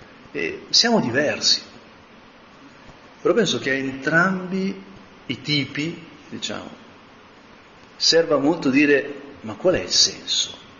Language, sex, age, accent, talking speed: Italian, male, 40-59, native, 105 wpm